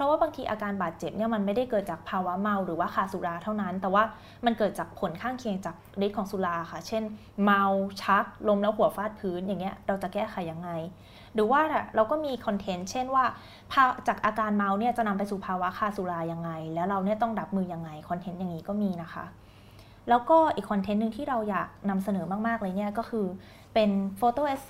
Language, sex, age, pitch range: Thai, female, 20-39, 190-230 Hz